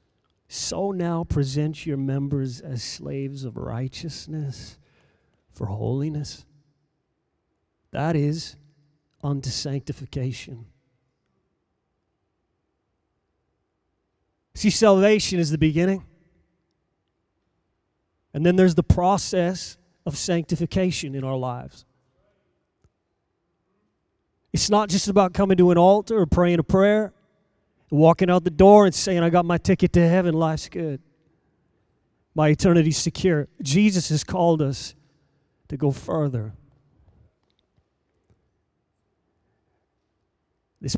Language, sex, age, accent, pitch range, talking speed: English, male, 30-49, American, 135-185 Hz, 100 wpm